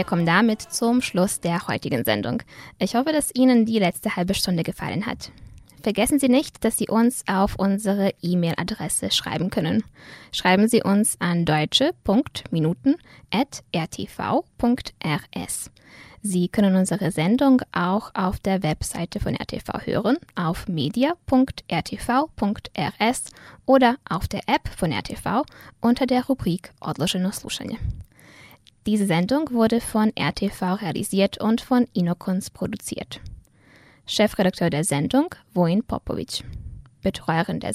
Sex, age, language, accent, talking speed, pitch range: female, 10-29, German, American, 120 wpm, 175-235 Hz